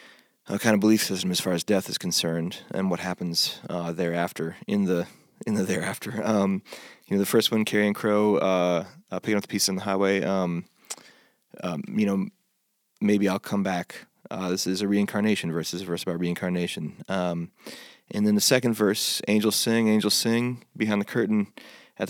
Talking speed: 195 wpm